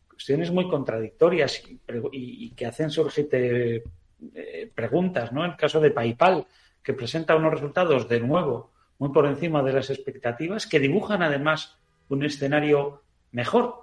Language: Spanish